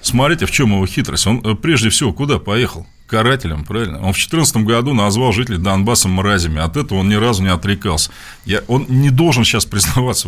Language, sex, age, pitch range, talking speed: Russian, male, 40-59, 105-160 Hz, 195 wpm